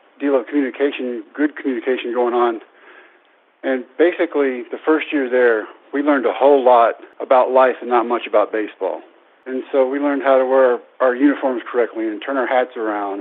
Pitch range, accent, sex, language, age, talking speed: 125-145 Hz, American, male, English, 50-69, 180 wpm